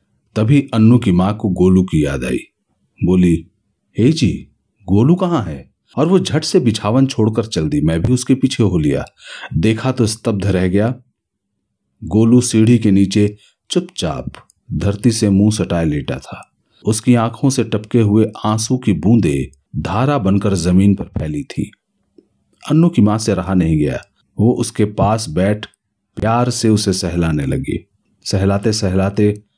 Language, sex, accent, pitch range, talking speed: Hindi, male, native, 95-120 Hz, 160 wpm